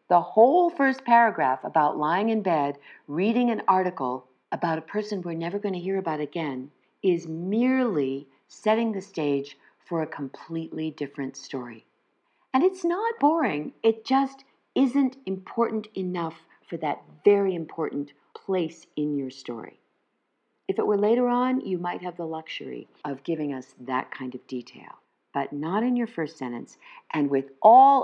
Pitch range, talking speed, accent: 140-220 Hz, 160 wpm, American